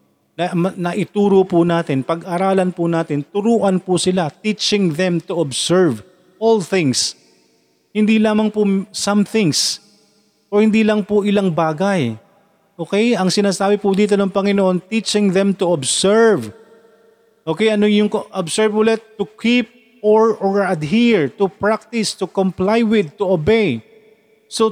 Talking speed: 135 wpm